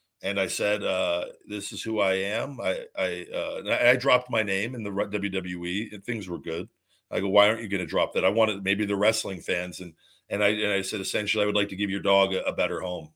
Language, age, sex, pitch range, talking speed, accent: English, 40-59, male, 95-110 Hz, 255 wpm, American